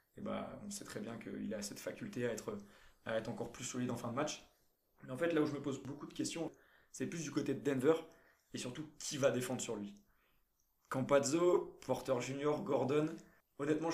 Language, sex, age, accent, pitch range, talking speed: French, male, 20-39, French, 120-145 Hz, 215 wpm